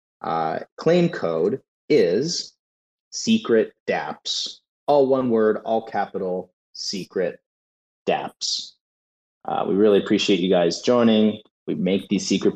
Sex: male